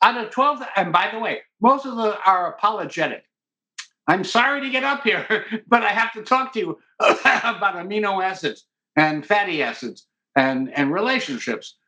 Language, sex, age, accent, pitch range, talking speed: English, male, 60-79, American, 160-240 Hz, 170 wpm